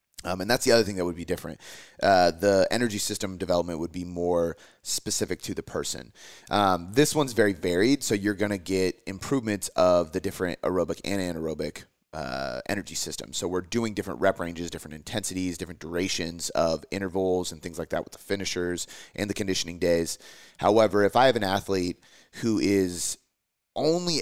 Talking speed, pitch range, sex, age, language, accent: 185 wpm, 90-110 Hz, male, 30-49, English, American